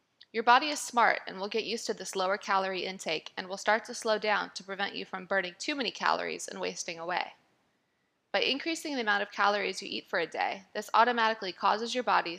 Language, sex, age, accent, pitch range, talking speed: English, female, 20-39, American, 200-240 Hz, 225 wpm